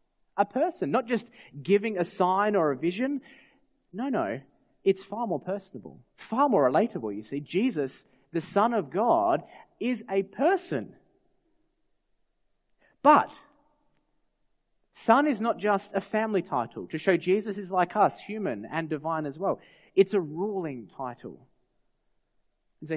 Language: English